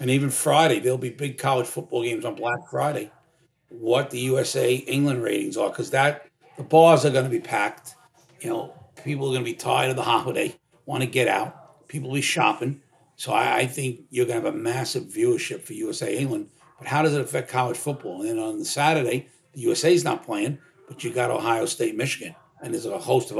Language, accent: English, American